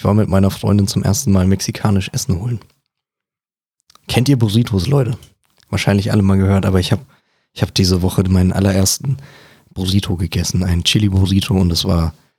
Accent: German